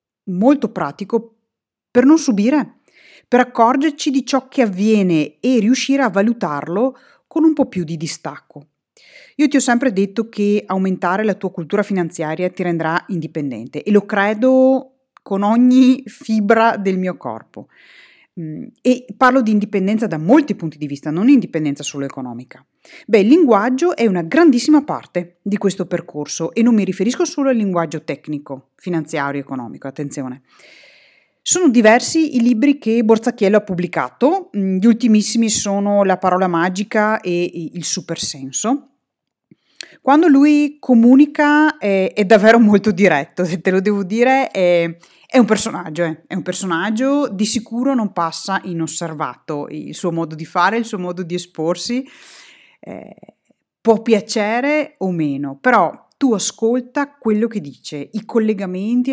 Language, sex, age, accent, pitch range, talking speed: Italian, female, 30-49, native, 170-245 Hz, 145 wpm